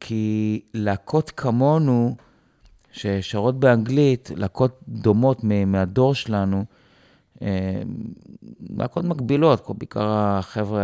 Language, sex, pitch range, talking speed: Hebrew, male, 100-125 Hz, 80 wpm